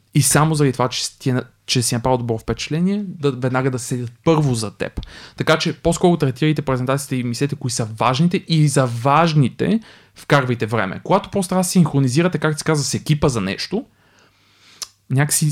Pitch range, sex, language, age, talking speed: 120-150 Hz, male, Bulgarian, 20-39, 175 wpm